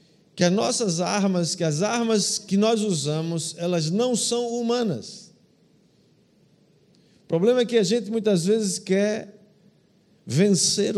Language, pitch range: Portuguese, 175-225 Hz